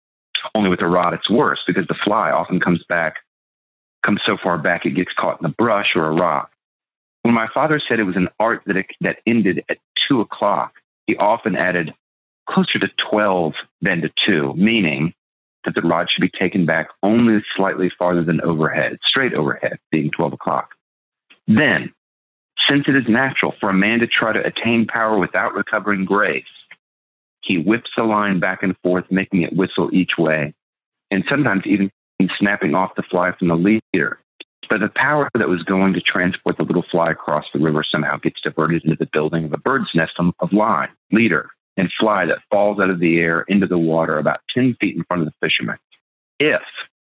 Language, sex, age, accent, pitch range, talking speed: English, male, 40-59, American, 85-110 Hz, 195 wpm